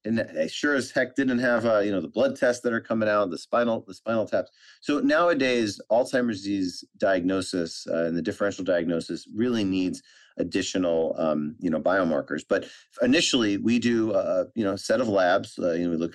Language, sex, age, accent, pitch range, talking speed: English, male, 30-49, American, 90-110 Hz, 205 wpm